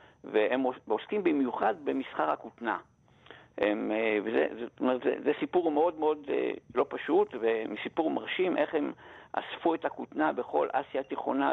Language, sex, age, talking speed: Hebrew, male, 60-79, 115 wpm